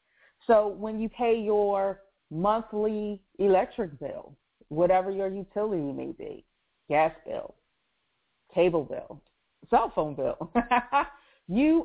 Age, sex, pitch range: 40-59, female, 180-215 Hz